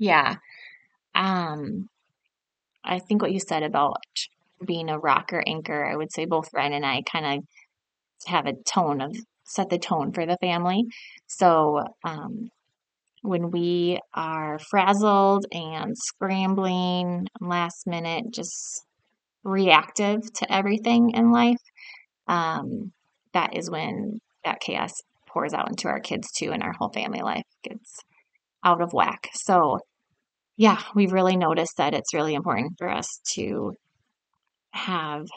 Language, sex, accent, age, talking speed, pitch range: English, female, American, 20-39, 135 wpm, 170-215 Hz